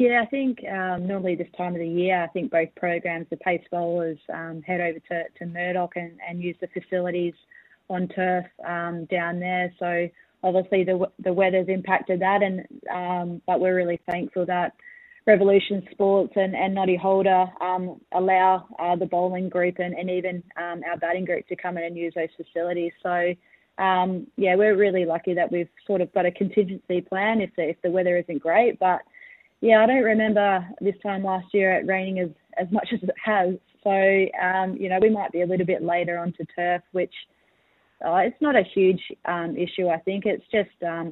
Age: 20-39